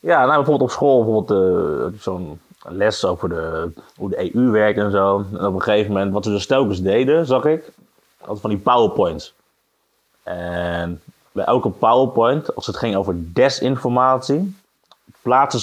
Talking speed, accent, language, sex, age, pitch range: 165 wpm, Dutch, Dutch, male, 30-49, 100-145 Hz